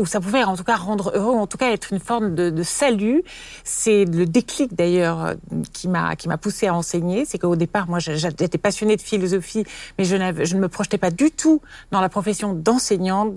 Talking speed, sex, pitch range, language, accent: 225 wpm, female, 175-230 Hz, French, French